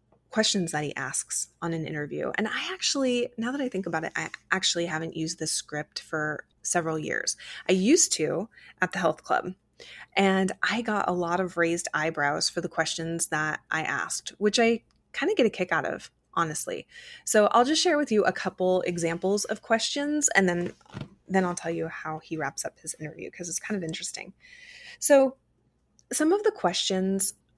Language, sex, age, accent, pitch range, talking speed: English, female, 20-39, American, 165-230 Hz, 195 wpm